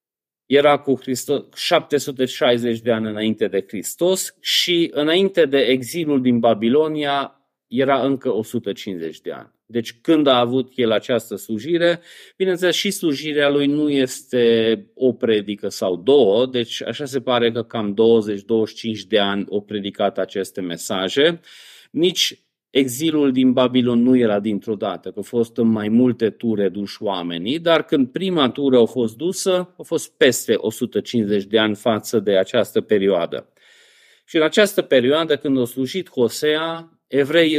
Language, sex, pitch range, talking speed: Romanian, male, 115-145 Hz, 145 wpm